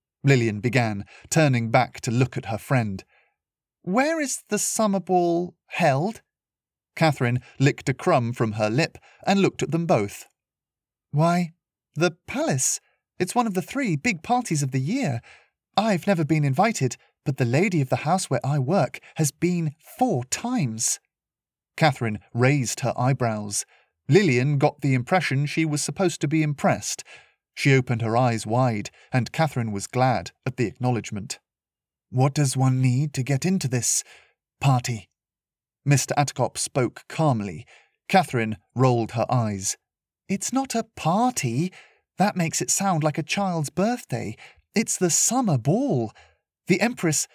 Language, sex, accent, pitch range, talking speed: English, male, British, 125-180 Hz, 150 wpm